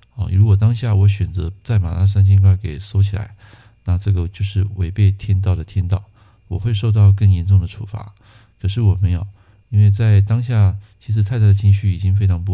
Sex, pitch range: male, 95-105 Hz